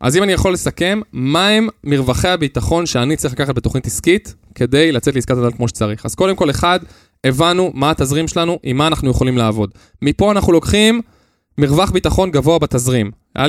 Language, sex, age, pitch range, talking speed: Hebrew, male, 20-39, 130-185 Hz, 180 wpm